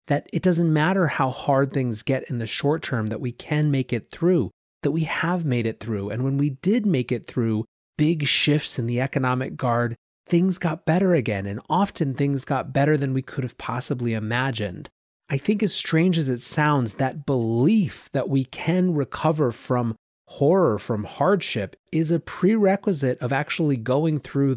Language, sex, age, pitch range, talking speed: English, male, 30-49, 120-150 Hz, 185 wpm